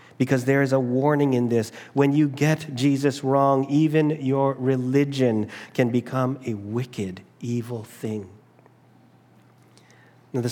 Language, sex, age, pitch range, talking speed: English, male, 40-59, 125-145 Hz, 130 wpm